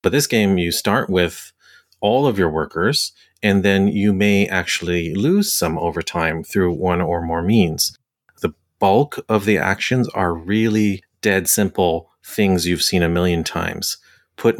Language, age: English, 30-49